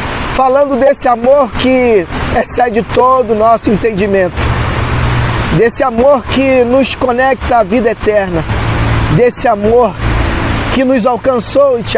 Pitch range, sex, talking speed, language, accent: 205-265 Hz, male, 120 wpm, Portuguese, Brazilian